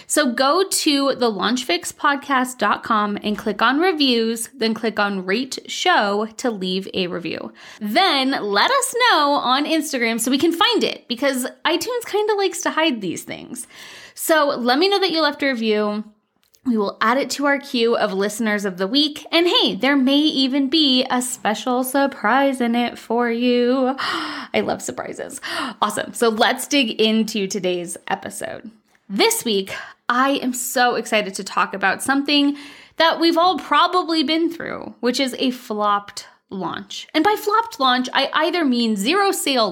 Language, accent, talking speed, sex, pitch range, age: English, American, 170 wpm, female, 230-320 Hz, 20-39